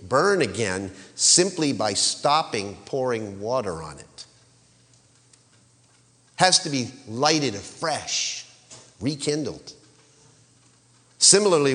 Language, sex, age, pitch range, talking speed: English, male, 50-69, 115-145 Hz, 80 wpm